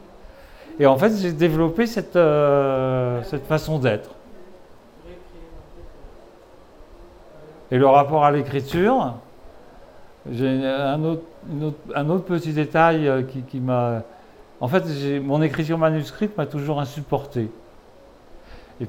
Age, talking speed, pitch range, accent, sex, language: 50-69, 100 wpm, 120-150 Hz, French, male, French